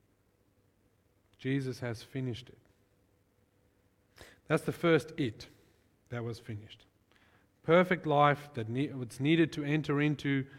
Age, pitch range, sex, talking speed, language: 40-59, 125-180 Hz, male, 115 wpm, English